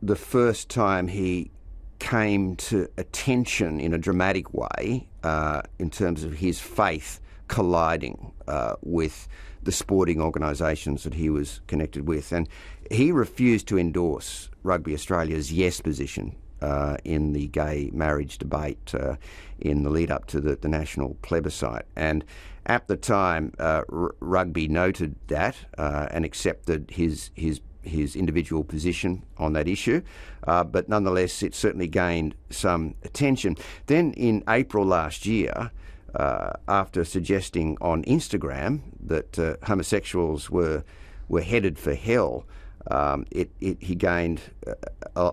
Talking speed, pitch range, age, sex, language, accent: 140 wpm, 75-95 Hz, 50-69, male, English, Australian